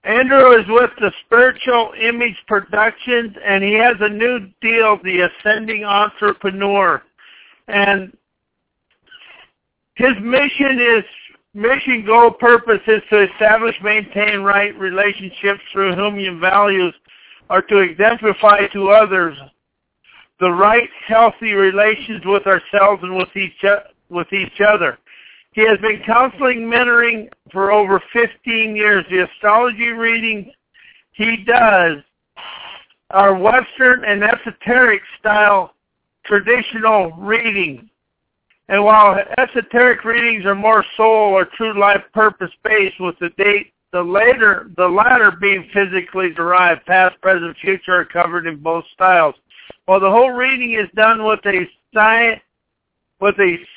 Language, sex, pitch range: English, male, 195-230 Hz